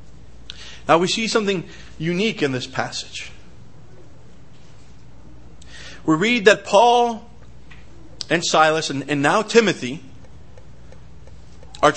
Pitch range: 135-200 Hz